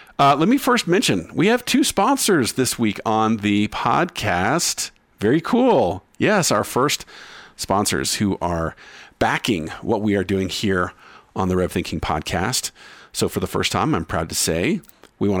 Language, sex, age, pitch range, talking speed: English, male, 50-69, 95-135 Hz, 170 wpm